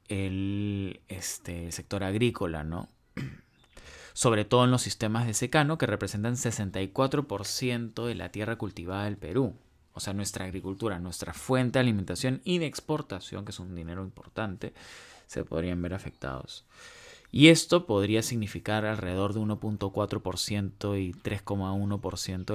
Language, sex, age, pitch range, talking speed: Spanish, male, 20-39, 95-125 Hz, 130 wpm